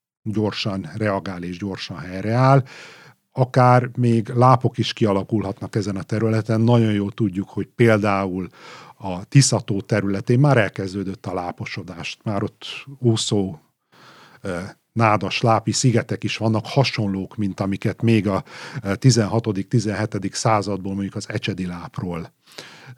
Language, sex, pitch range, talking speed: Hungarian, male, 95-120 Hz, 110 wpm